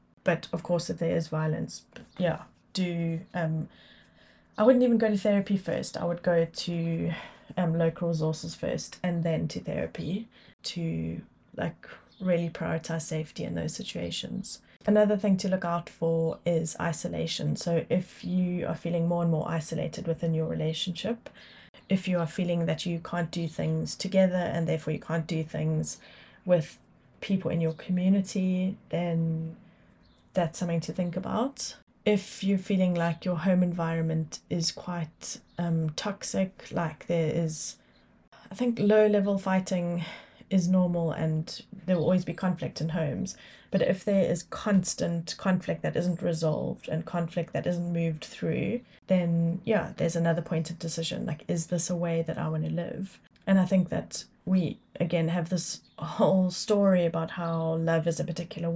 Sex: female